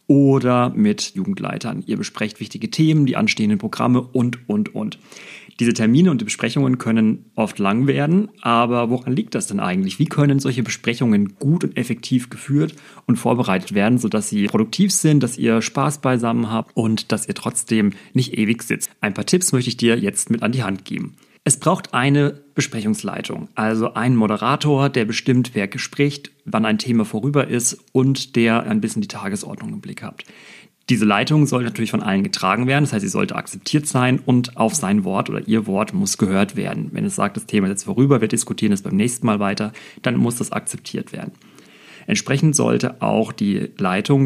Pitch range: 110-150 Hz